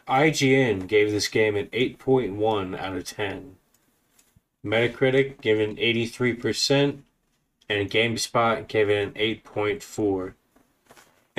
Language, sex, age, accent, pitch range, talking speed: English, male, 20-39, American, 110-130 Hz, 105 wpm